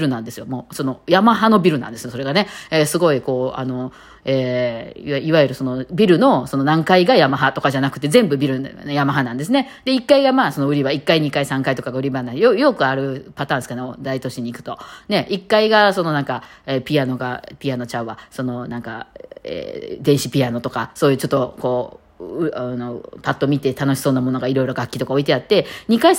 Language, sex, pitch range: Japanese, female, 130-170 Hz